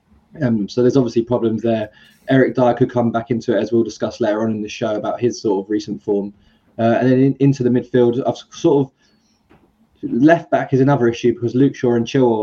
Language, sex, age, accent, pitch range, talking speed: English, male, 20-39, British, 110-125 Hz, 225 wpm